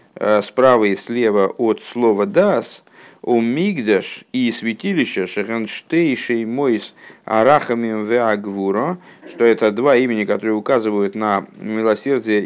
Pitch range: 110-140 Hz